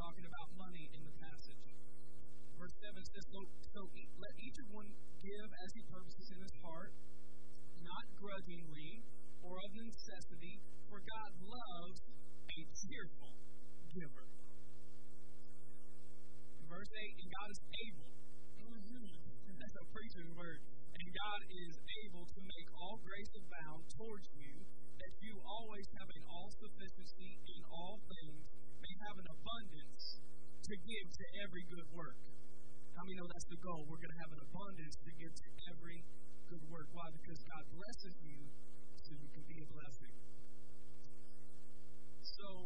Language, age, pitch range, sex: English, 40-59, 125-180 Hz, male